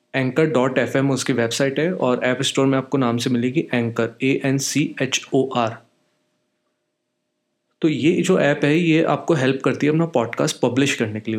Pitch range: 120-140 Hz